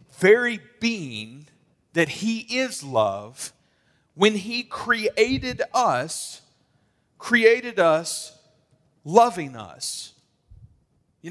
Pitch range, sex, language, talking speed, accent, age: 125-170 Hz, male, English, 80 wpm, American, 40-59